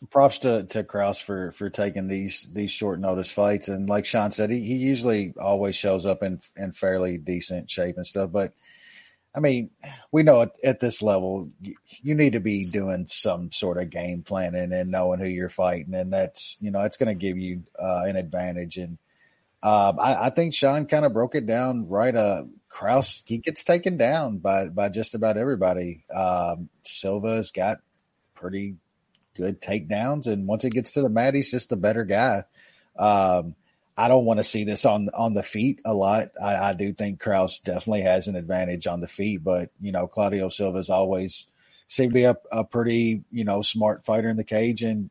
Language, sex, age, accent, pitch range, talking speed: English, male, 30-49, American, 95-115 Hz, 200 wpm